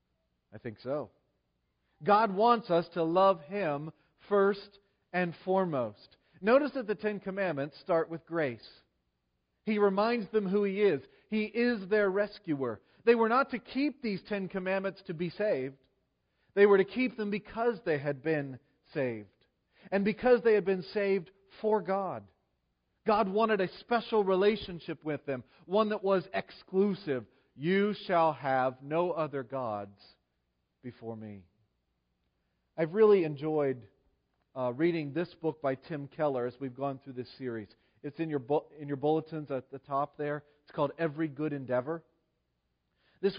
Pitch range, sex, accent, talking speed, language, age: 135-200 Hz, male, American, 155 wpm, English, 40-59